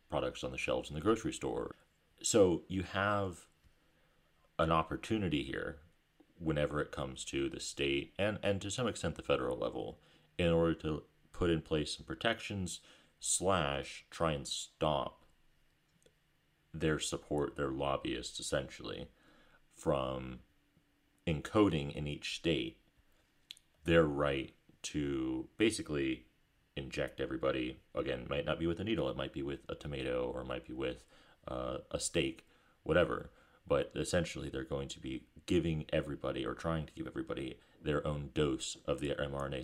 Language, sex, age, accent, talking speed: English, male, 30-49, American, 145 wpm